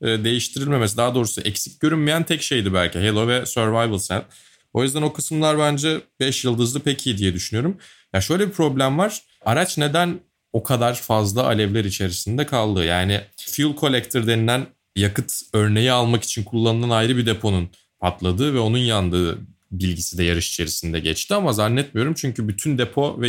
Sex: male